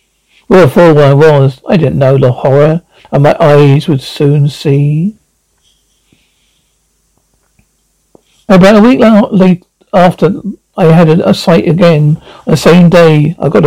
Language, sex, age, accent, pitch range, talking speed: English, male, 60-79, British, 145-175 Hz, 130 wpm